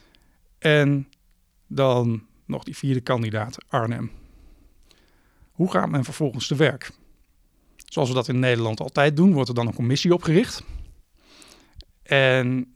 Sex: male